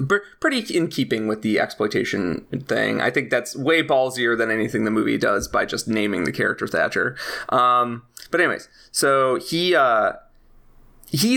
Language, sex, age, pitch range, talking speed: English, male, 20-39, 115-145 Hz, 160 wpm